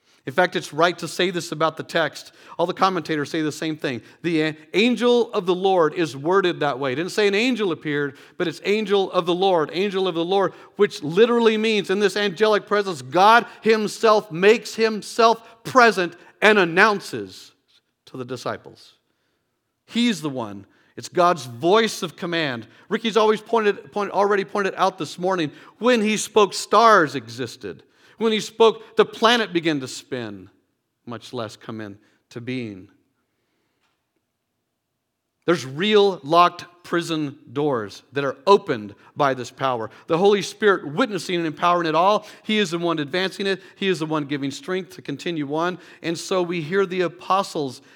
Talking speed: 170 wpm